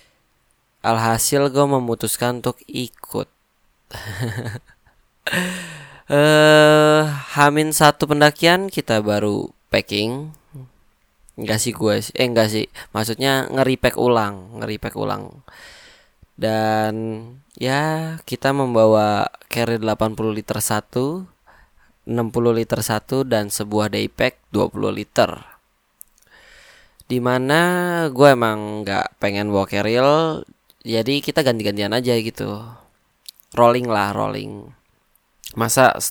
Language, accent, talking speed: Indonesian, native, 90 wpm